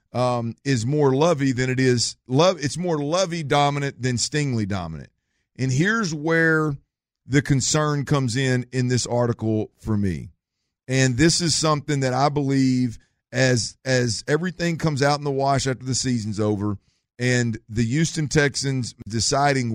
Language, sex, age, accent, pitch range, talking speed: English, male, 40-59, American, 120-150 Hz, 150 wpm